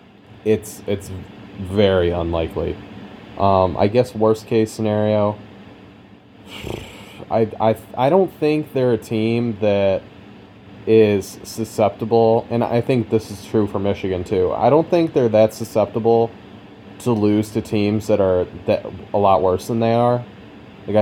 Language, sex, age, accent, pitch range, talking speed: English, male, 20-39, American, 95-110 Hz, 145 wpm